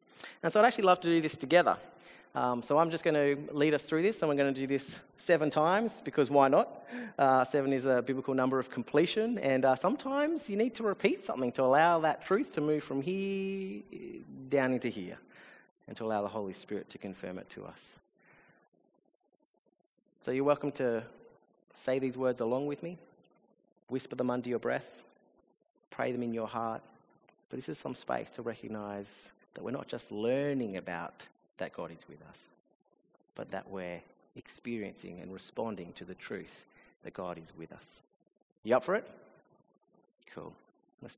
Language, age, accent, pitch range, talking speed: English, 30-49, Australian, 110-155 Hz, 185 wpm